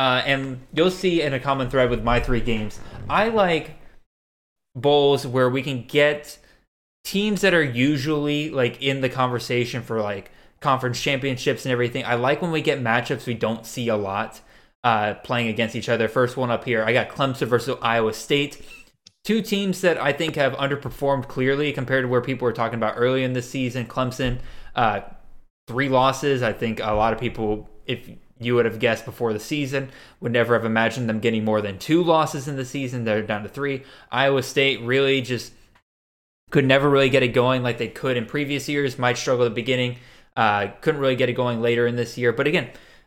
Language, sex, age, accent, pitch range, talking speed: English, male, 20-39, American, 120-140 Hz, 205 wpm